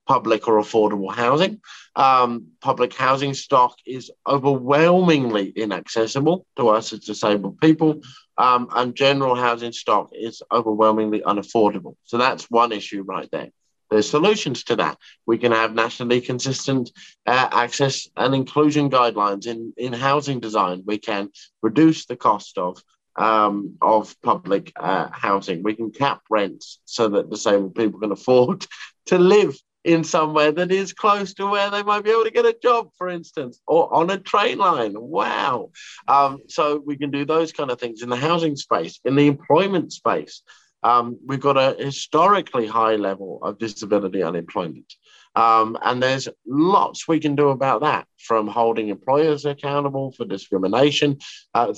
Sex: male